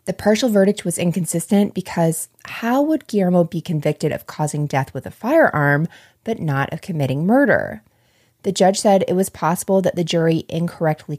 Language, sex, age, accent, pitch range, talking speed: English, female, 20-39, American, 150-185 Hz, 170 wpm